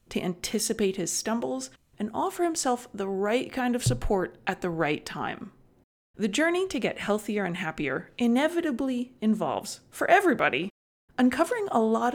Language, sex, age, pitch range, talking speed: English, female, 30-49, 185-240 Hz, 150 wpm